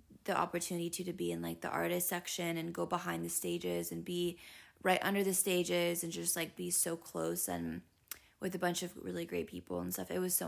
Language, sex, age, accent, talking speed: English, female, 20-39, American, 230 wpm